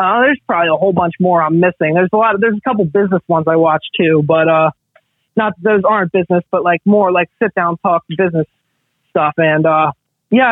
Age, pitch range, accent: 30-49, 170-205 Hz, American